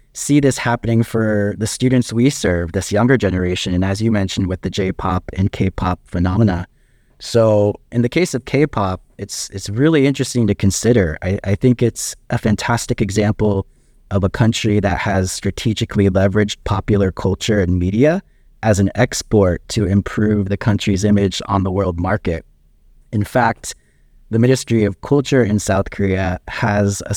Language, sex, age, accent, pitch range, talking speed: English, male, 20-39, American, 95-125 Hz, 165 wpm